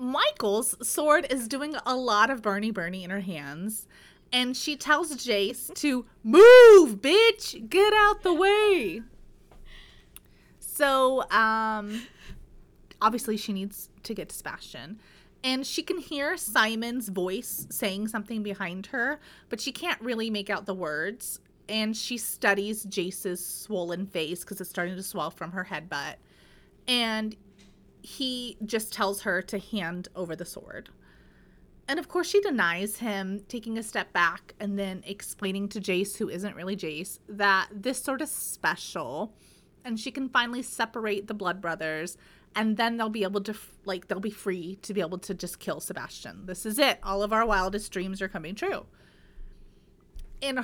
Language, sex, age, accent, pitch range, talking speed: English, female, 30-49, American, 195-250 Hz, 160 wpm